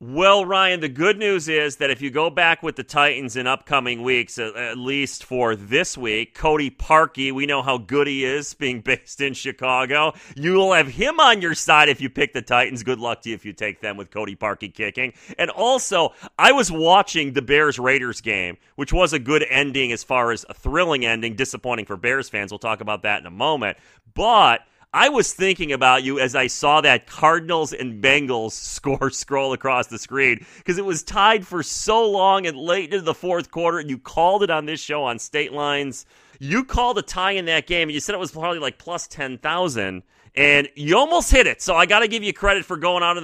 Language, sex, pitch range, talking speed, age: English, male, 125-160 Hz, 225 wpm, 30-49